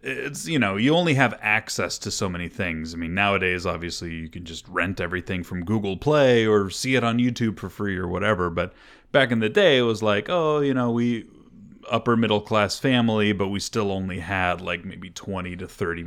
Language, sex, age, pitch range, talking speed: English, male, 30-49, 90-115 Hz, 215 wpm